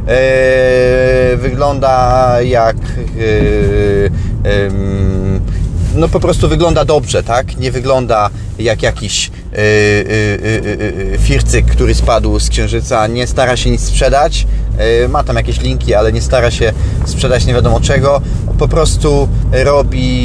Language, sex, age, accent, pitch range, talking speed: Polish, male, 30-49, native, 110-130 Hz, 130 wpm